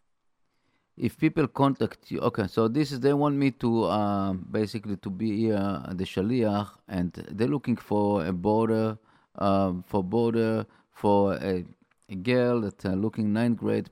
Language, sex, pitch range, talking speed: English, male, 95-120 Hz, 155 wpm